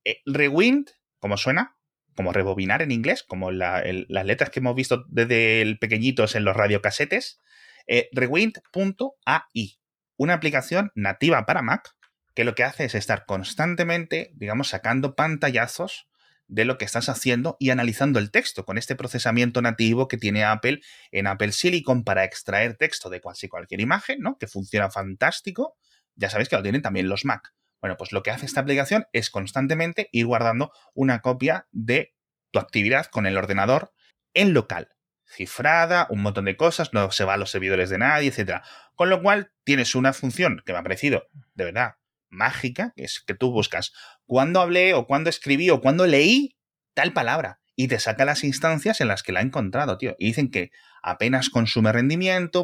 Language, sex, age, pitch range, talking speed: Spanish, male, 30-49, 105-145 Hz, 180 wpm